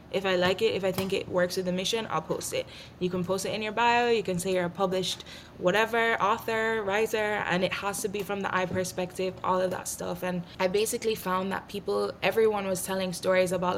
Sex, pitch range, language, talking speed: female, 175-195 Hz, English, 240 wpm